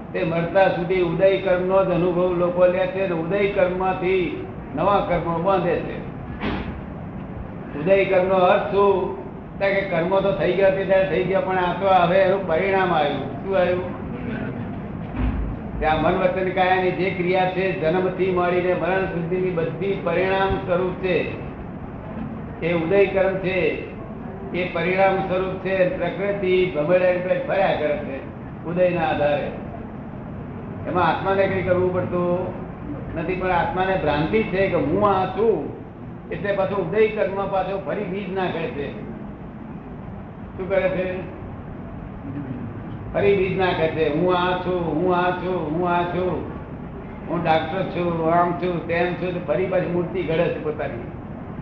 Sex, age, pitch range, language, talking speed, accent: male, 60-79, 170-190 Hz, Gujarati, 35 wpm, native